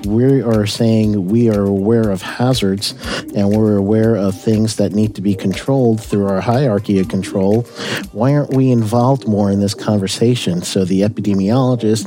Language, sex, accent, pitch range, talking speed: English, male, American, 95-115 Hz, 170 wpm